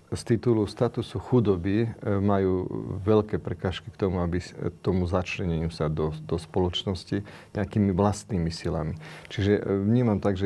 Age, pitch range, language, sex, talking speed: 40-59, 95-110 Hz, Slovak, male, 130 wpm